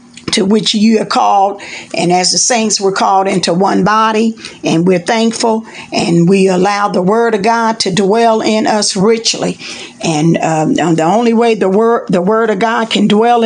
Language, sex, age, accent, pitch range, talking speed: English, female, 50-69, American, 195-230 Hz, 190 wpm